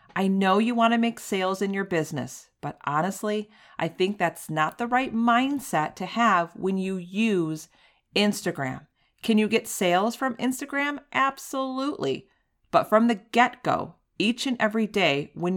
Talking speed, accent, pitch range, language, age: 160 wpm, American, 160-215 Hz, English, 40-59